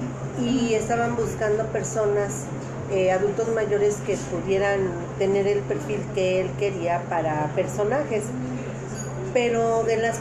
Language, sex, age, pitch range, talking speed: Spanish, female, 40-59, 160-210 Hz, 120 wpm